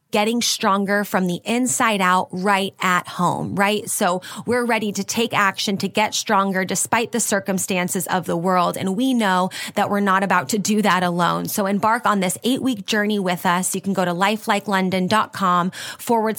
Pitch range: 190-225 Hz